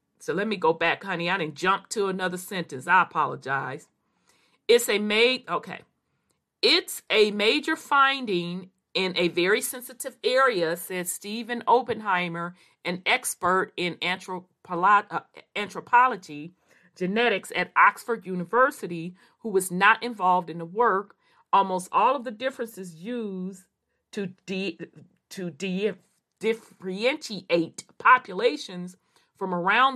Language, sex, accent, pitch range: English, female, American, 180-245 Hz